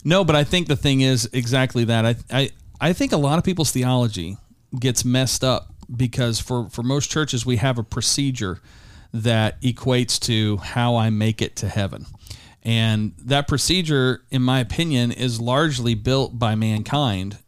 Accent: American